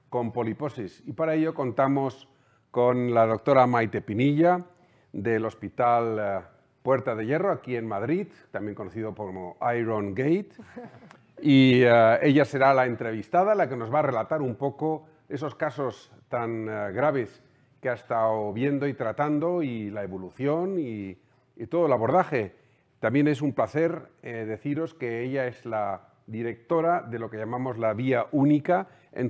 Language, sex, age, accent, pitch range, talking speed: Spanish, male, 50-69, Spanish, 110-140 Hz, 155 wpm